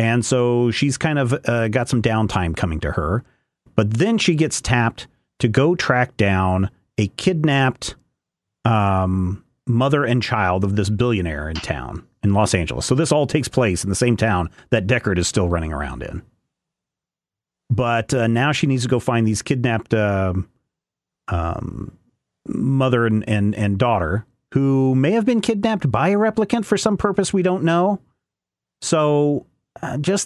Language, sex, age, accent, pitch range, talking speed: English, male, 40-59, American, 110-145 Hz, 165 wpm